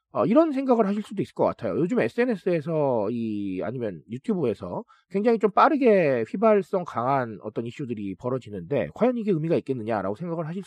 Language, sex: Korean, male